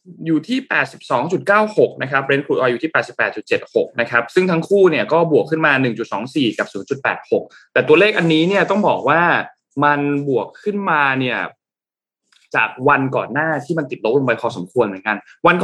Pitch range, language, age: 120-155 Hz, Thai, 20-39